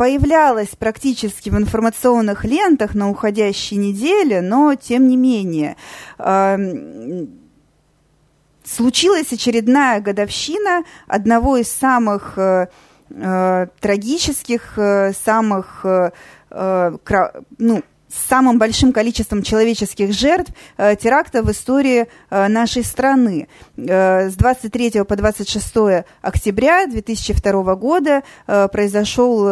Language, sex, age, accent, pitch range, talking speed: Russian, female, 20-39, native, 205-260 Hz, 85 wpm